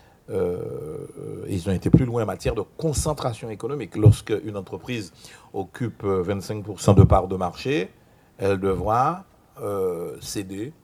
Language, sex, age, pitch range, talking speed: French, male, 60-79, 100-150 Hz, 125 wpm